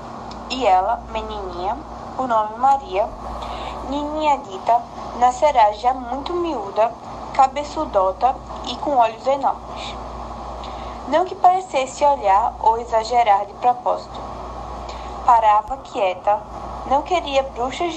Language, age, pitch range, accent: Portuguese, 20-39, 235-330 Hz, Brazilian